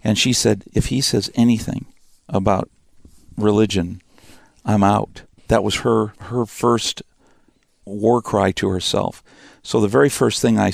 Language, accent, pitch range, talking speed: English, American, 100-120 Hz, 145 wpm